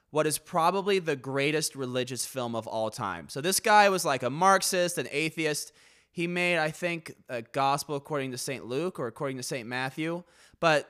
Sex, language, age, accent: male, English, 20-39, American